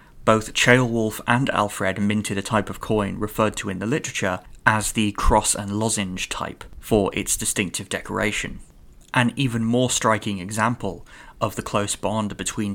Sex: male